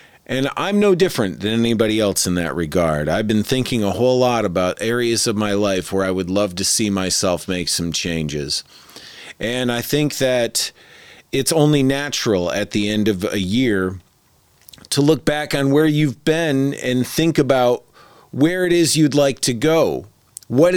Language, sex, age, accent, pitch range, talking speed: English, male, 40-59, American, 95-135 Hz, 180 wpm